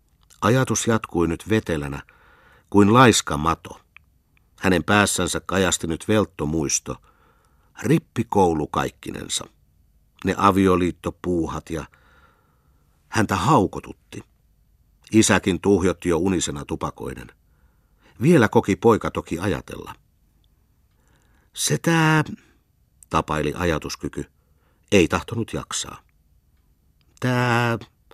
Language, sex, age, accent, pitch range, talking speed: Finnish, male, 60-79, native, 75-105 Hz, 80 wpm